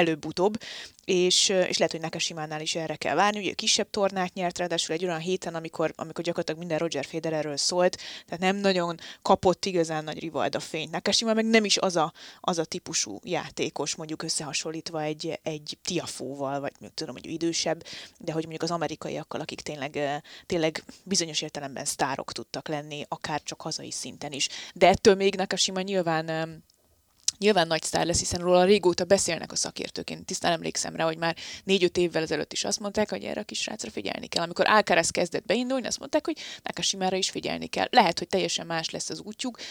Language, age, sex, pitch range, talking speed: Hungarian, 20-39, female, 160-195 Hz, 190 wpm